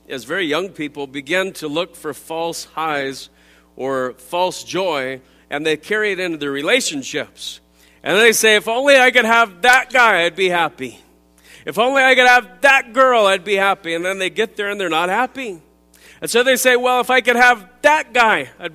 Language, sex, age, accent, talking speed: English, male, 40-59, American, 205 wpm